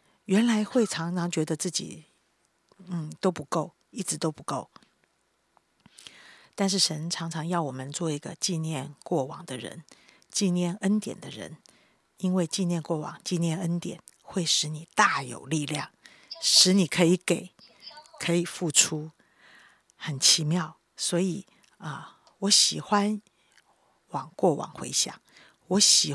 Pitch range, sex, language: 155-190 Hz, female, Chinese